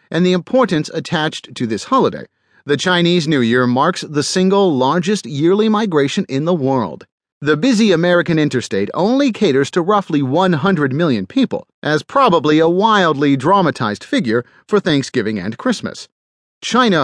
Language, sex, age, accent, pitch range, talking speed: English, male, 40-59, American, 135-195 Hz, 150 wpm